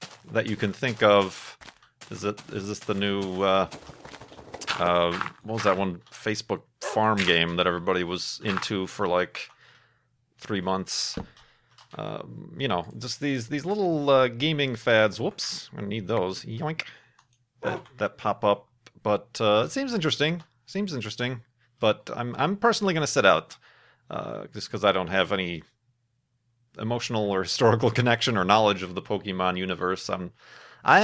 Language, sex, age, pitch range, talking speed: English, male, 40-59, 105-160 Hz, 155 wpm